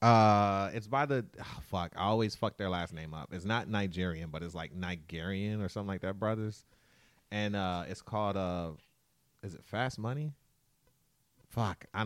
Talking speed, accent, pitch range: 180 wpm, American, 95-140 Hz